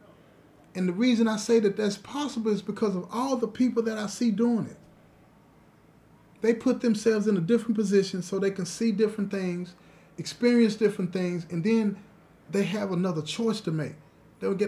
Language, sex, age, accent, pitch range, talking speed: English, male, 30-49, American, 170-230 Hz, 175 wpm